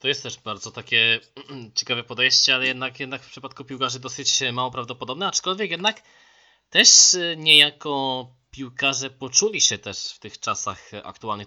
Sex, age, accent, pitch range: male, 20-39, native, 110-135 Hz